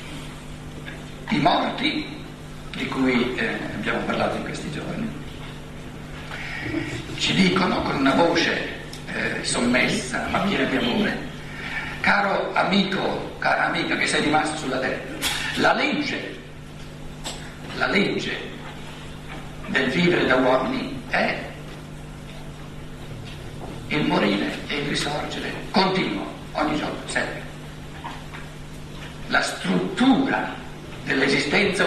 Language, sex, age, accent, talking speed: Italian, male, 60-79, native, 95 wpm